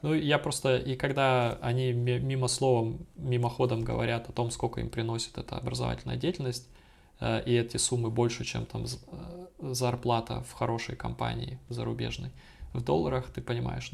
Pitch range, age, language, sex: 110-125 Hz, 20-39, Russian, male